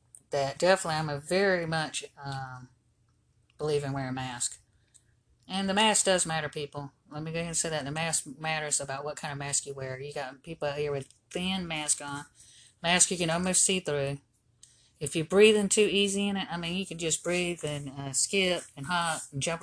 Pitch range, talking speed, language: 130-160 Hz, 215 wpm, English